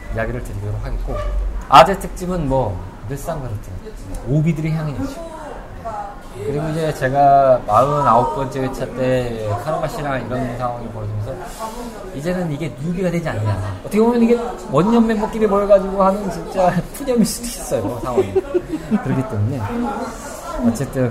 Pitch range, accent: 125-205 Hz, native